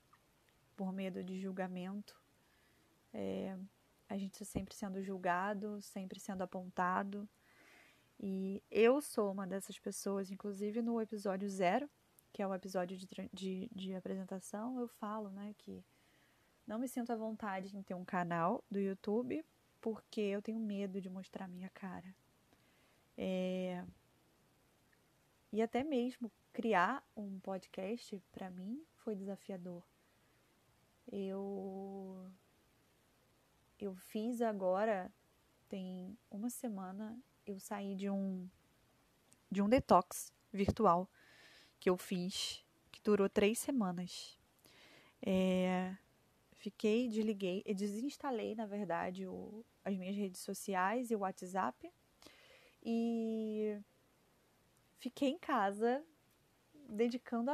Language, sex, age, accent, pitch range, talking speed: Portuguese, female, 20-39, Brazilian, 190-220 Hz, 110 wpm